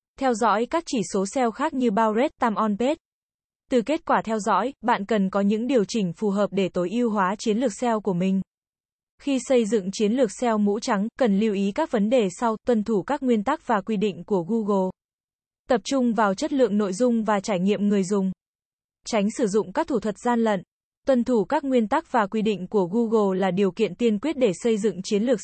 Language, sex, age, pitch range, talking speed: Vietnamese, female, 20-39, 200-250 Hz, 235 wpm